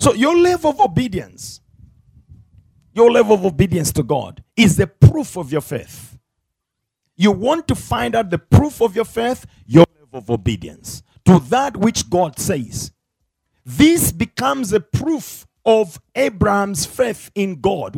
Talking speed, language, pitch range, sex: 150 wpm, English, 145-245 Hz, male